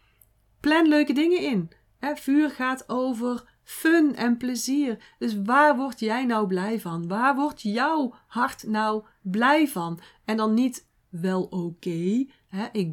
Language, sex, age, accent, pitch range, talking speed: Dutch, female, 40-59, Dutch, 205-275 Hz, 140 wpm